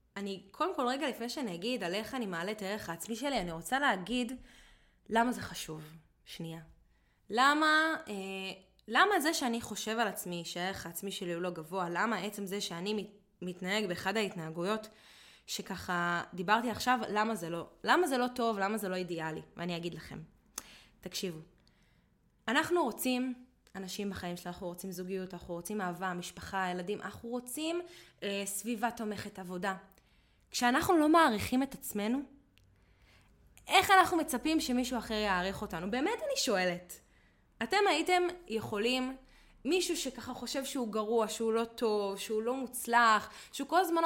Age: 20-39